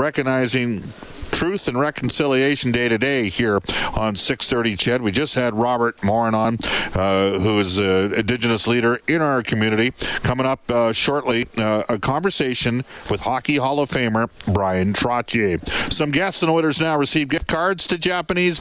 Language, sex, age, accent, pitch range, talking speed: English, male, 50-69, American, 120-150 Hz, 160 wpm